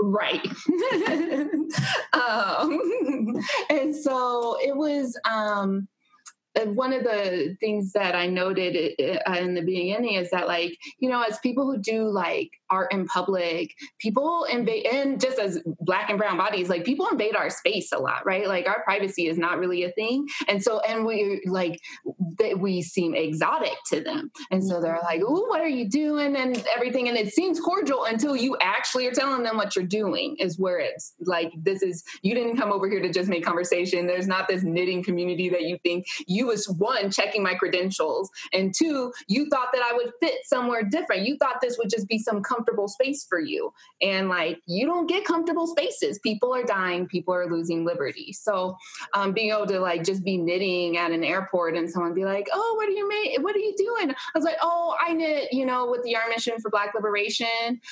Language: English